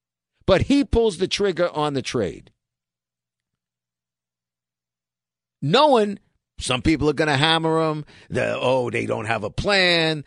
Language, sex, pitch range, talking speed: English, male, 115-165 Hz, 135 wpm